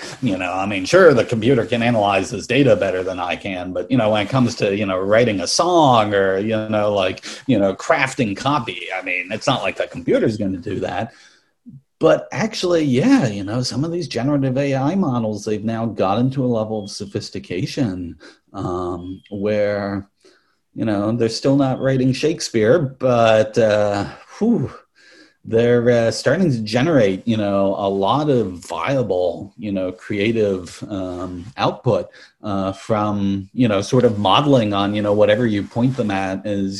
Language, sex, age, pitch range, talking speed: English, male, 40-59, 100-130 Hz, 180 wpm